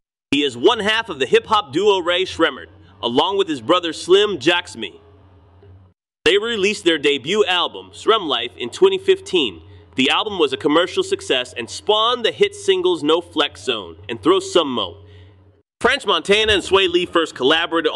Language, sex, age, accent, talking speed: English, male, 30-49, American, 165 wpm